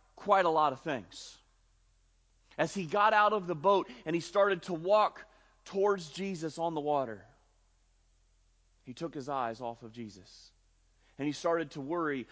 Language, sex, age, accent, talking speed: English, male, 40-59, American, 165 wpm